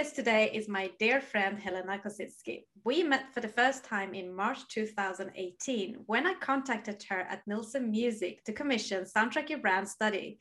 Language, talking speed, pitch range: English, 165 wpm, 195-270 Hz